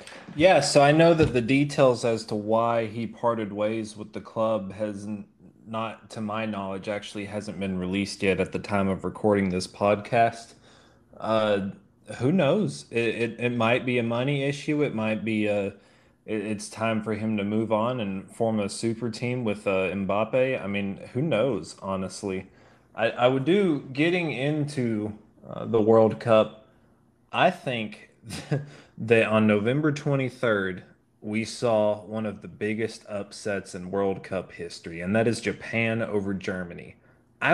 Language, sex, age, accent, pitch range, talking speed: English, male, 20-39, American, 100-120 Hz, 165 wpm